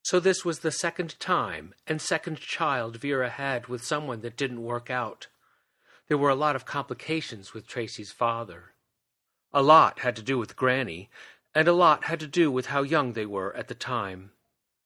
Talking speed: 190 wpm